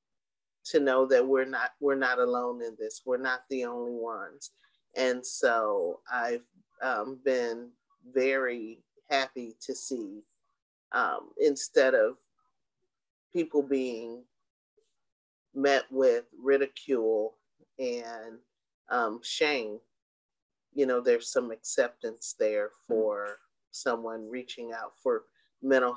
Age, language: 30-49, English